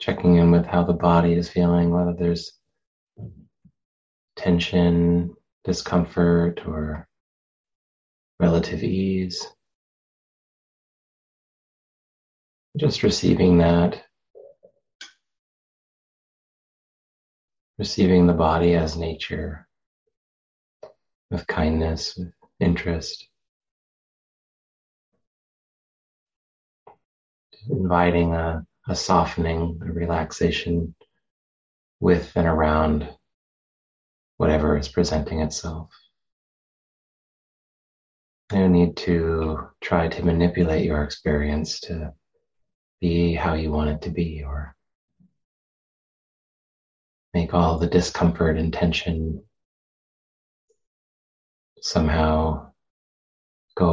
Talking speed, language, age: 70 wpm, English, 30-49